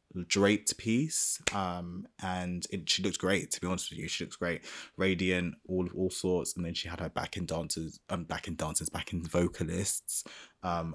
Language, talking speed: English, 205 wpm